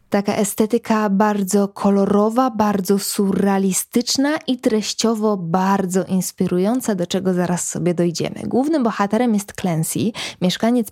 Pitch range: 190-230 Hz